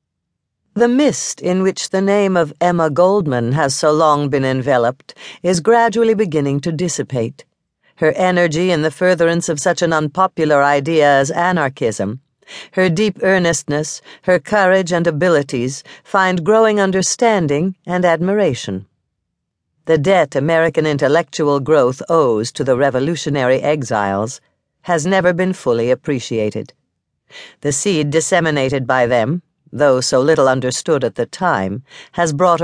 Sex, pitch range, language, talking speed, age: female, 140-190 Hz, English, 130 wpm, 60-79